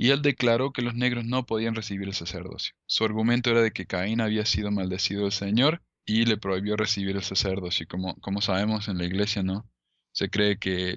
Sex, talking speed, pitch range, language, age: male, 210 wpm, 95-115 Hz, Spanish, 20-39